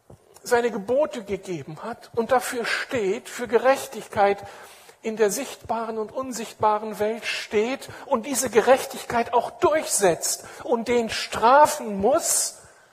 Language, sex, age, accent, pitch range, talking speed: German, male, 60-79, German, 200-260 Hz, 115 wpm